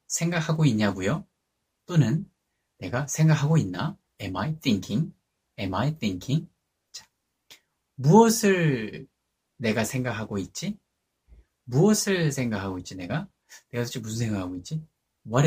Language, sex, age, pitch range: Korean, male, 30-49, 100-155 Hz